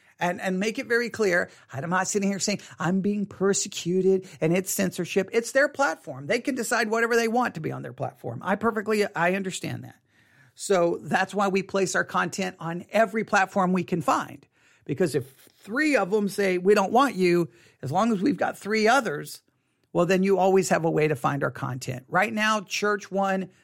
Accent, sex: American, male